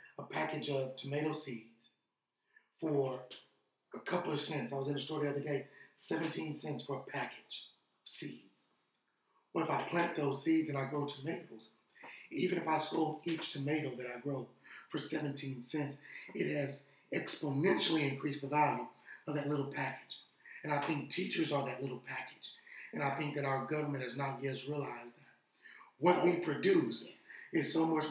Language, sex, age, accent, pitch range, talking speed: English, male, 30-49, American, 135-155 Hz, 175 wpm